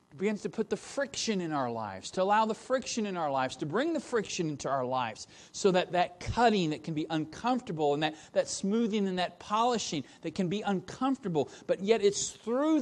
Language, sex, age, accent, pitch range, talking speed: English, male, 40-59, American, 160-245 Hz, 210 wpm